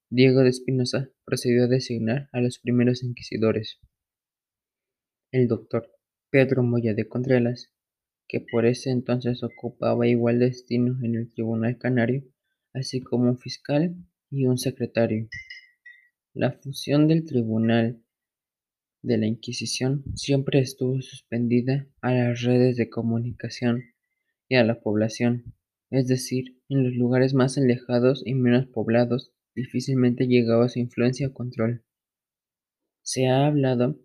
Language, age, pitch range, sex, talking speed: Spanish, 20-39, 120-130 Hz, male, 130 wpm